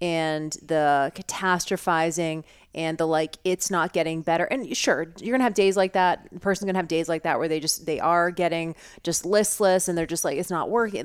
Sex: female